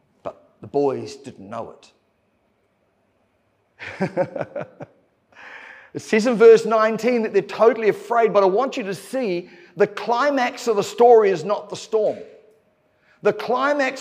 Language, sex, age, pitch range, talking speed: English, male, 50-69, 200-255 Hz, 135 wpm